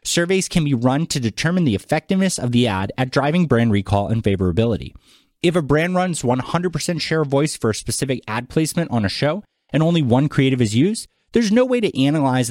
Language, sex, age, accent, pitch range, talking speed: English, male, 30-49, American, 105-150 Hz, 210 wpm